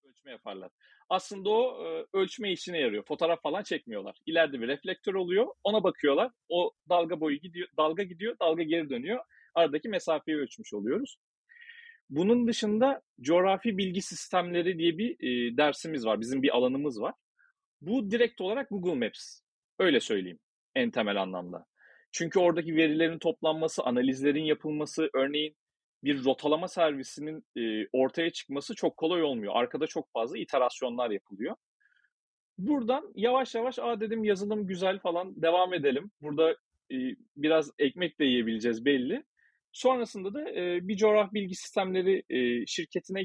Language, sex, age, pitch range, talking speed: Turkish, male, 40-59, 150-215 Hz, 135 wpm